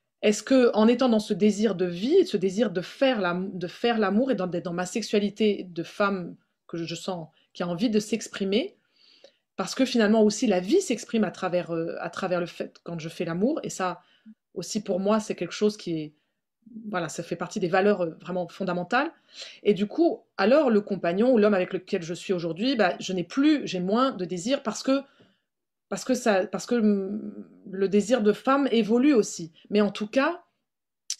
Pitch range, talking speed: 185-245 Hz, 205 wpm